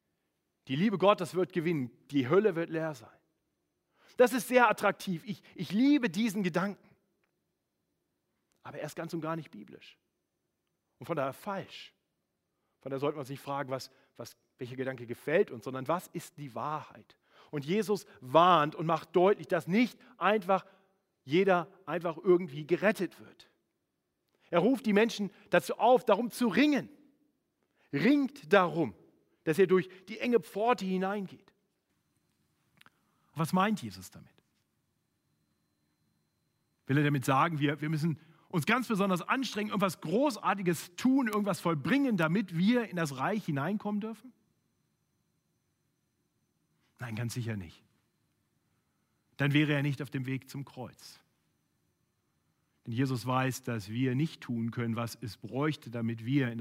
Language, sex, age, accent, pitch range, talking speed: German, male, 40-59, German, 130-200 Hz, 145 wpm